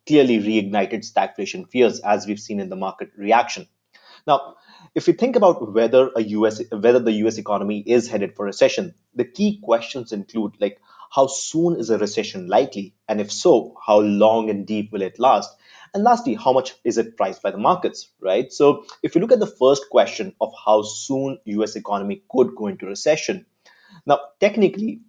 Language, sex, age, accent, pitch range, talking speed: English, male, 30-49, Indian, 105-150 Hz, 185 wpm